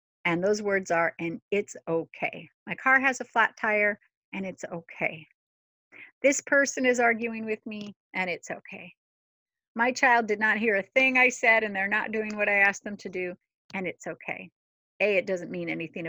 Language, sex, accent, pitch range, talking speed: English, female, American, 170-215 Hz, 195 wpm